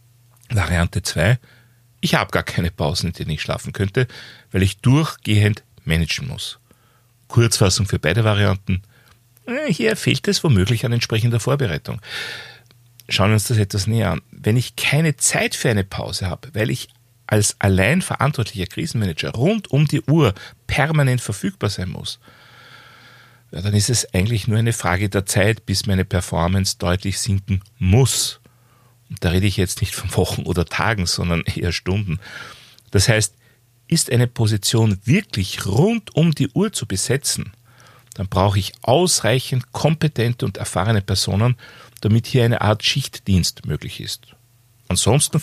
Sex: male